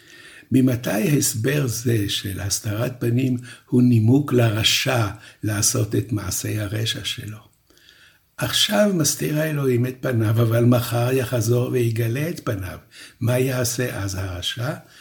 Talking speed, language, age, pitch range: 115 wpm, Hebrew, 60-79, 105-130 Hz